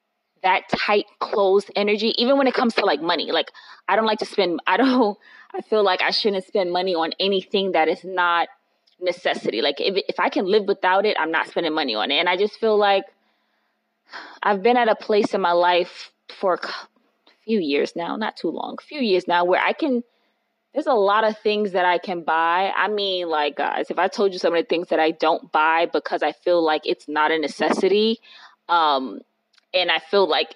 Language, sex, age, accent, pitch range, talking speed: English, female, 20-39, American, 175-215 Hz, 220 wpm